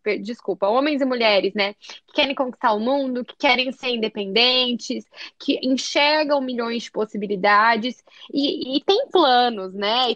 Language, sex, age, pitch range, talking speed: Portuguese, female, 10-29, 230-300 Hz, 150 wpm